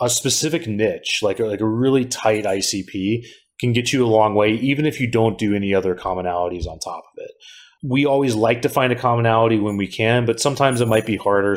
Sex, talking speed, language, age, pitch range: male, 230 wpm, English, 30-49, 100-130 Hz